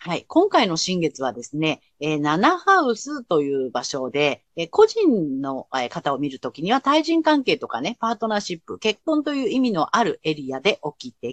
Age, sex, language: 40-59, female, Japanese